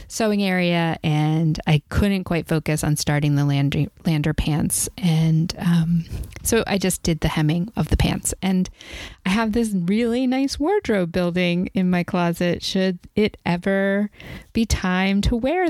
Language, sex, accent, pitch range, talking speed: English, female, American, 160-205 Hz, 160 wpm